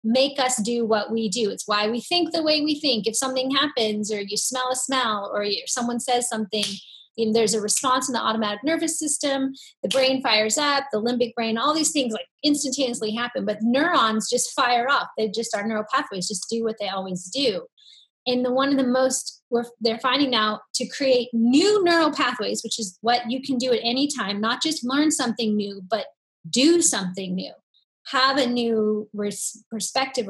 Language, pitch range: English, 215-270 Hz